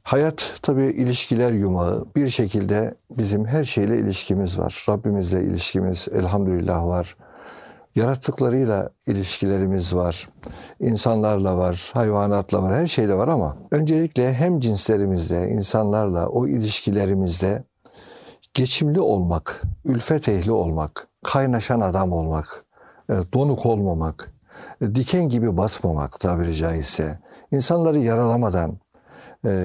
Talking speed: 100 wpm